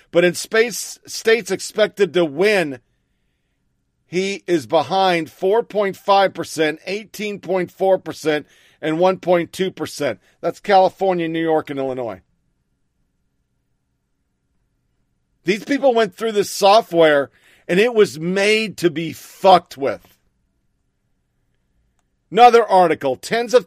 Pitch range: 160-210 Hz